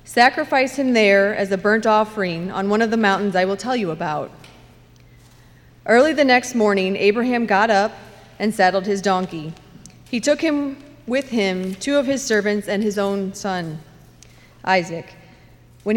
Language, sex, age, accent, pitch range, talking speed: English, female, 30-49, American, 185-235 Hz, 160 wpm